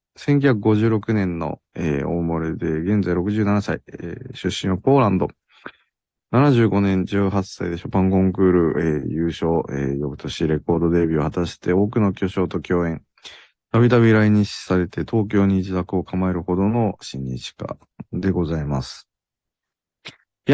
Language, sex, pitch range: Japanese, male, 80-110 Hz